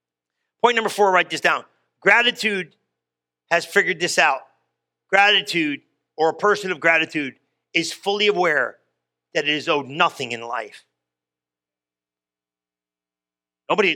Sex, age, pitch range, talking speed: male, 40-59, 140-230 Hz, 125 wpm